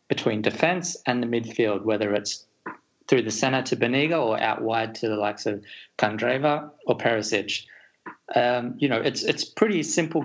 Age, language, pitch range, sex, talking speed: 20-39, English, 110-135 Hz, male, 170 wpm